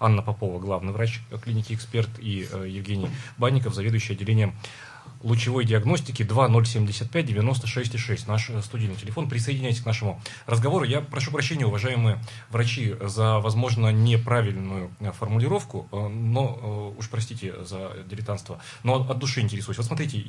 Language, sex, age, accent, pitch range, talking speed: Russian, male, 30-49, native, 105-125 Hz, 130 wpm